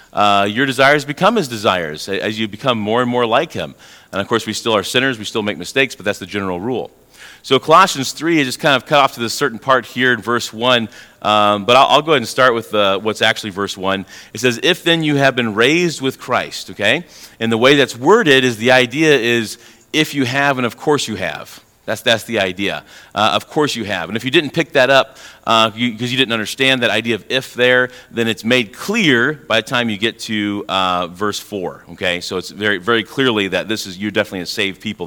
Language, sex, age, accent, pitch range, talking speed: English, male, 40-59, American, 105-135 Hz, 245 wpm